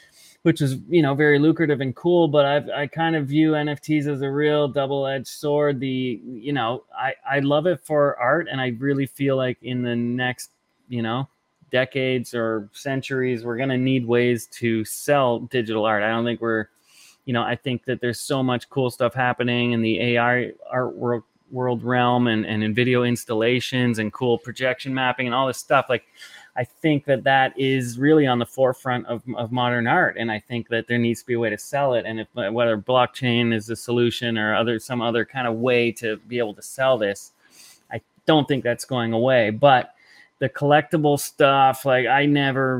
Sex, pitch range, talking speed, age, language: male, 120-135 Hz, 205 wpm, 30-49, English